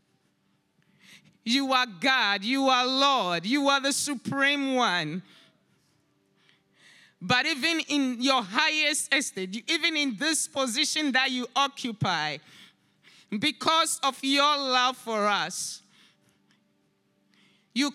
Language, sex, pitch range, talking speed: English, male, 220-315 Hz, 105 wpm